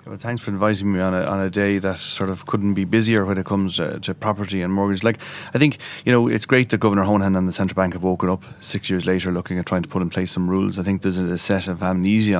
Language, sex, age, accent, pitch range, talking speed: English, male, 30-49, Irish, 90-105 Hz, 295 wpm